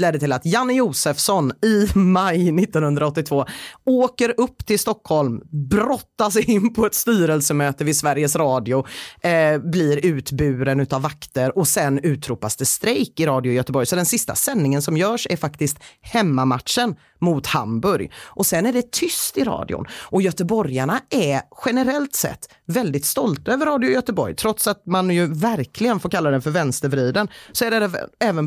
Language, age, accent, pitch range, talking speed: Swedish, 30-49, native, 140-205 Hz, 160 wpm